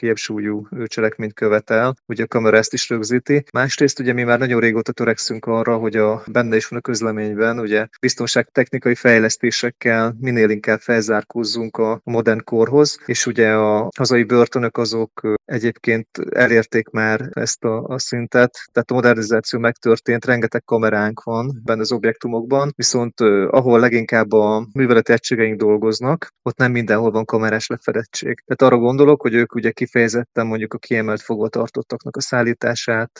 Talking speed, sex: 150 wpm, male